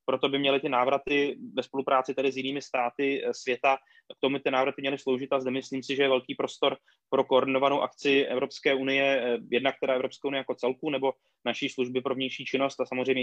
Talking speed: 205 wpm